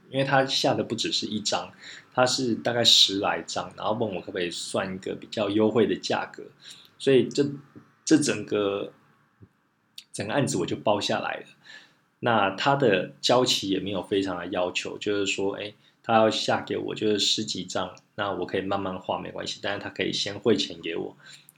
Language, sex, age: Chinese, male, 20-39